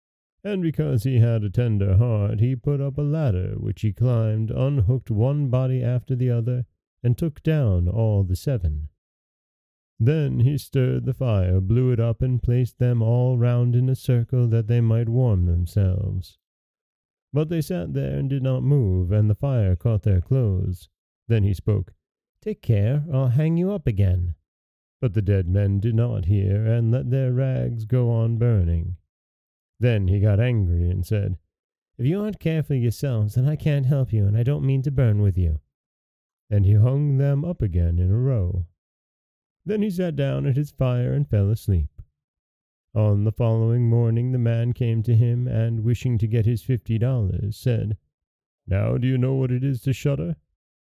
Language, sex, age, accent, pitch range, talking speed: English, male, 30-49, American, 100-130 Hz, 185 wpm